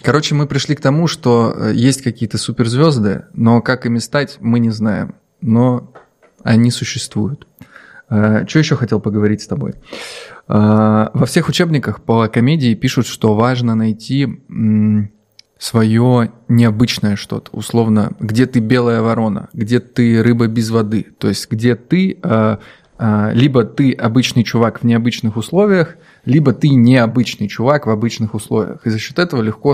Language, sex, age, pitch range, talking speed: Russian, male, 20-39, 110-135 Hz, 140 wpm